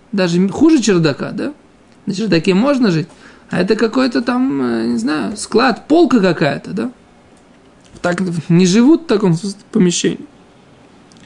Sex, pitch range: male, 160-225 Hz